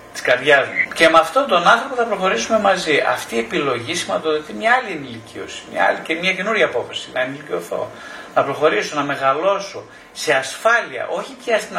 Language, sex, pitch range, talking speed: Greek, male, 130-200 Hz, 155 wpm